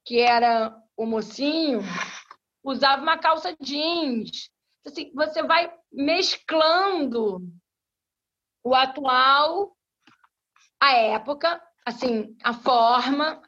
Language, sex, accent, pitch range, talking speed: Portuguese, female, Brazilian, 220-305 Hz, 75 wpm